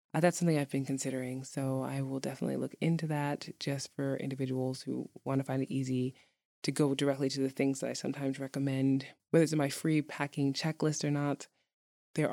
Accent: American